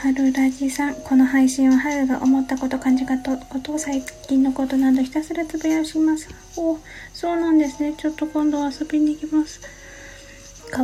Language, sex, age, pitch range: Japanese, female, 20-39, 230-295 Hz